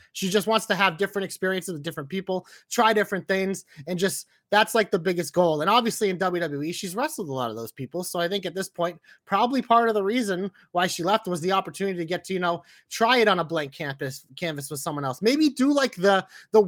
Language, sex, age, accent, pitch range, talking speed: English, male, 30-49, American, 165-200 Hz, 245 wpm